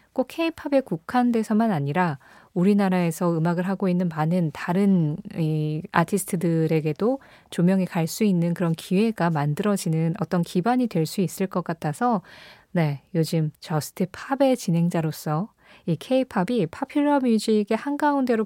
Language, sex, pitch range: Korean, female, 165-230 Hz